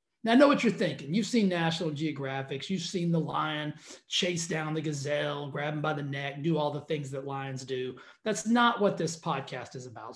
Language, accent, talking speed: English, American, 220 wpm